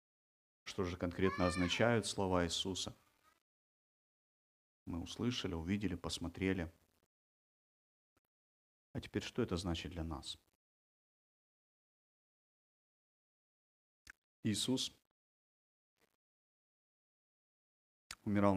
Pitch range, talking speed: 80-100 Hz, 60 wpm